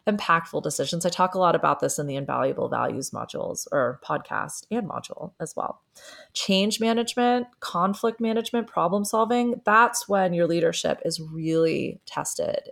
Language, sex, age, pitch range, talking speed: English, female, 30-49, 170-225 Hz, 150 wpm